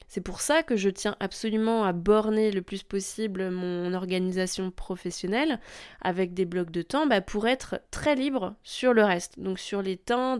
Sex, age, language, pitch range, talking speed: female, 20-39, French, 190-235 Hz, 185 wpm